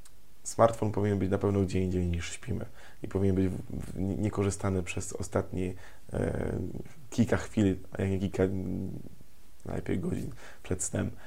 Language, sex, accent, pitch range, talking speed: Polish, male, native, 95-105 Hz, 130 wpm